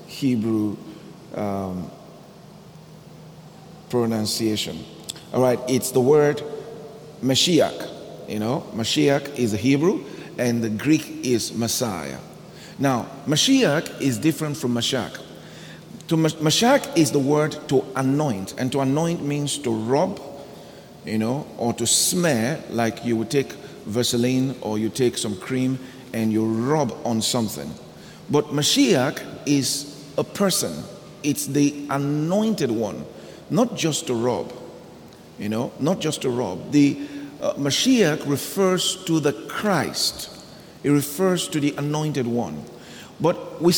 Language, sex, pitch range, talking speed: English, male, 115-155 Hz, 125 wpm